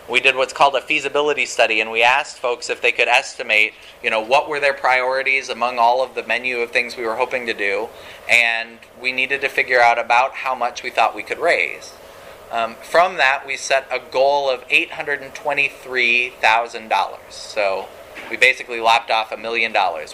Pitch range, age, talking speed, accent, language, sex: 115-145 Hz, 30-49, 195 wpm, American, English, male